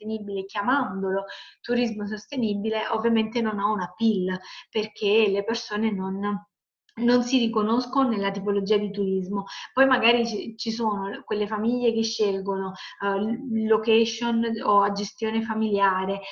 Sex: female